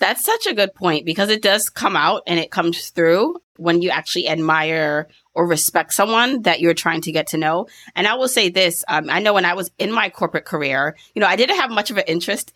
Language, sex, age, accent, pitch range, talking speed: English, female, 30-49, American, 160-195 Hz, 250 wpm